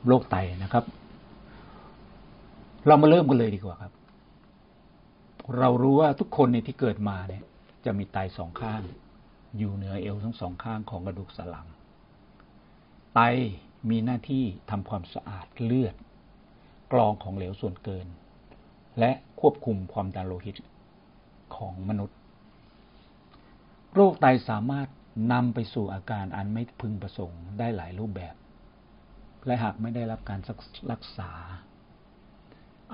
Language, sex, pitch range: Thai, male, 95-115 Hz